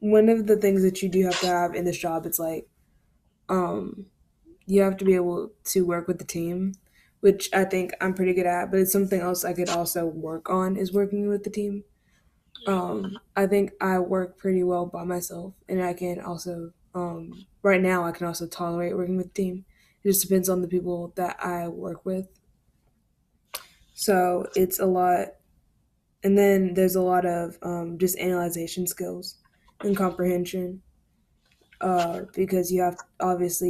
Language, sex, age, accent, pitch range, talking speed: English, female, 10-29, American, 175-190 Hz, 185 wpm